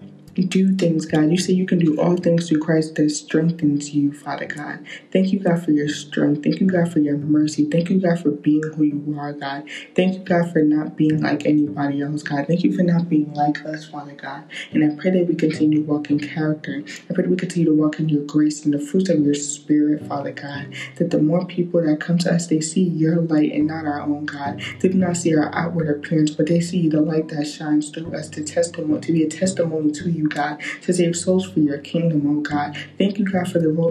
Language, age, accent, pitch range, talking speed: English, 20-39, American, 150-170 Hz, 245 wpm